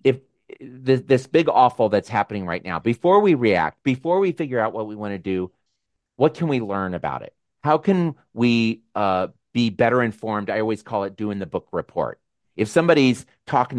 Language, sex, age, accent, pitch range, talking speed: English, male, 40-59, American, 95-125 Hz, 190 wpm